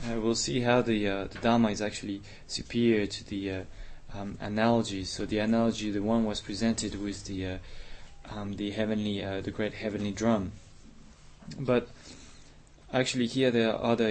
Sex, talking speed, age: male, 165 wpm, 20-39